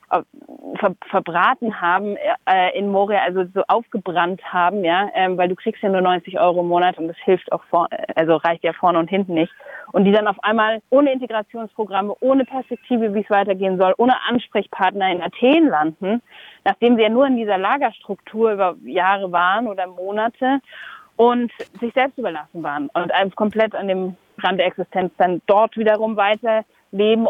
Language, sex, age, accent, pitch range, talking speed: German, female, 30-49, German, 180-220 Hz, 170 wpm